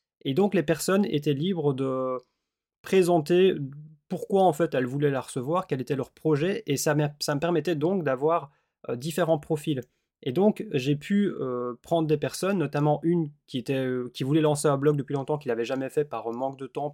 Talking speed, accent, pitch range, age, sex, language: 205 wpm, French, 135-170 Hz, 20-39, male, French